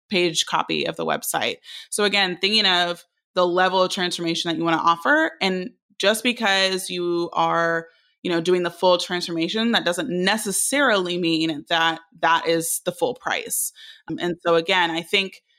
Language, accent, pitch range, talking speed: English, American, 170-195 Hz, 170 wpm